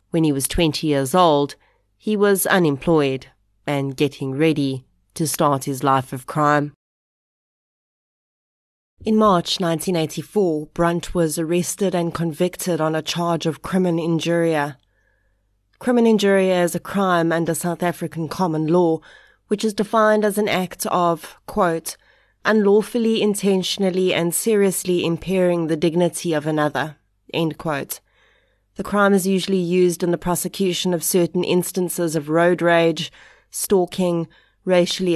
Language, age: English, 30-49